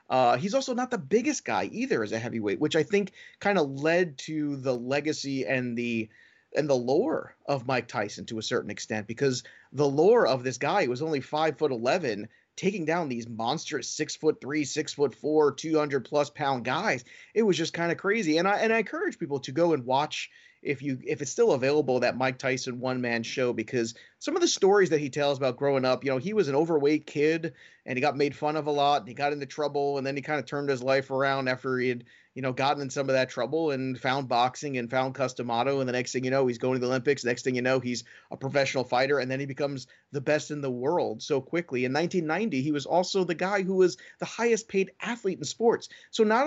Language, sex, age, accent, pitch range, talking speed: English, male, 30-49, American, 130-165 Hz, 245 wpm